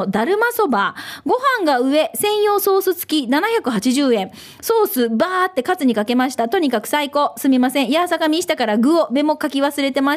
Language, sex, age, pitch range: Japanese, female, 20-39, 265-385 Hz